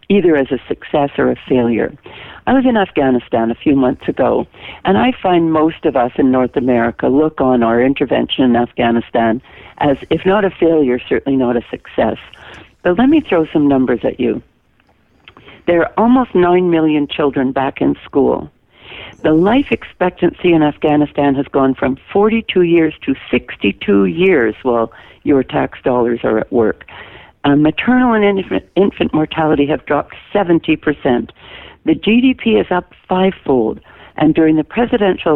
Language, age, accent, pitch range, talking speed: English, 60-79, American, 130-180 Hz, 160 wpm